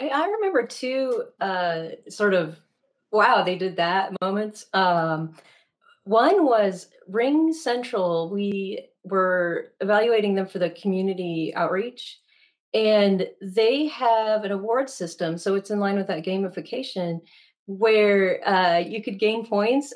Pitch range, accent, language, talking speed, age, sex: 180-230 Hz, American, English, 130 wpm, 30-49, female